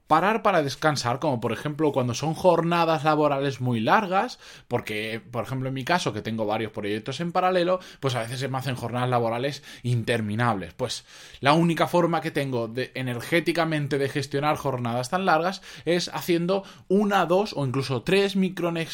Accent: Spanish